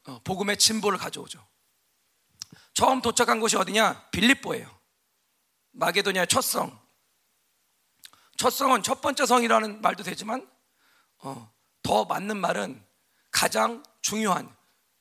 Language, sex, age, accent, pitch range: Korean, male, 40-59, native, 200-250 Hz